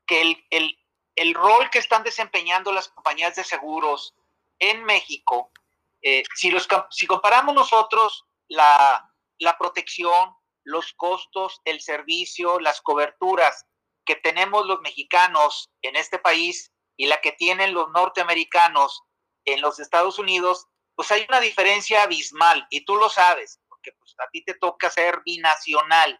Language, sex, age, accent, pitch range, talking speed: Spanish, male, 40-59, Mexican, 160-210 Hz, 135 wpm